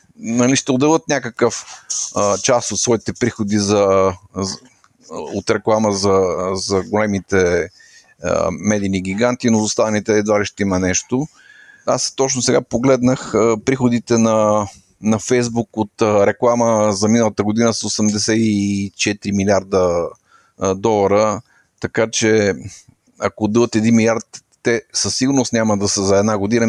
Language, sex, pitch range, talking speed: Bulgarian, male, 100-125 Hz, 135 wpm